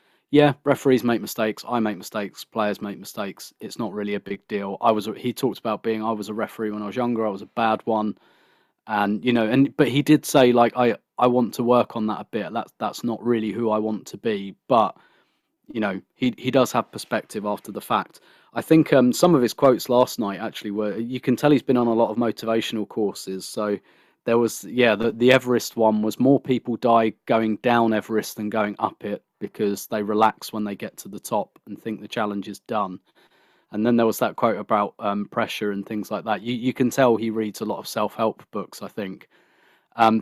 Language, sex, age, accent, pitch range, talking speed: English, male, 20-39, British, 105-125 Hz, 235 wpm